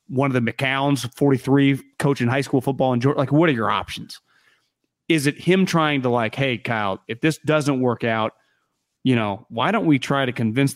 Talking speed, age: 205 wpm, 30-49